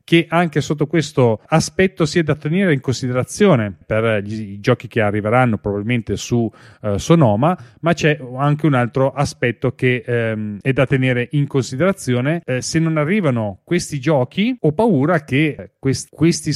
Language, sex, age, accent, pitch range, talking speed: Italian, male, 30-49, native, 120-155 Hz, 160 wpm